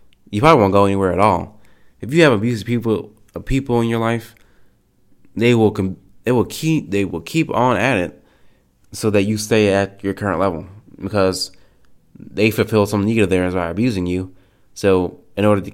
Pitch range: 90-105 Hz